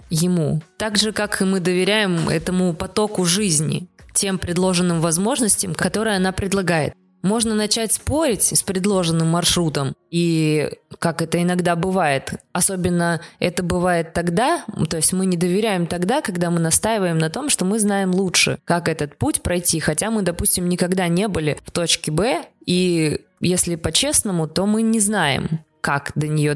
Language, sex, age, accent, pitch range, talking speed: Russian, female, 20-39, native, 165-195 Hz, 155 wpm